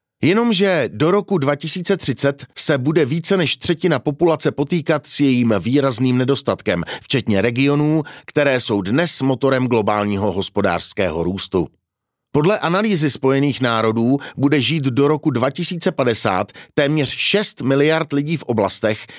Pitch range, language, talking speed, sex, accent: 115-155 Hz, Czech, 120 wpm, male, native